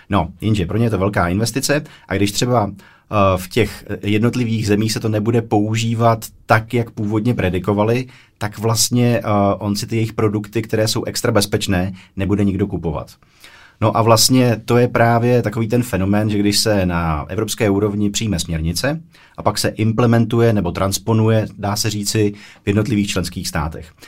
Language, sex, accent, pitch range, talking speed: Czech, male, native, 100-115 Hz, 165 wpm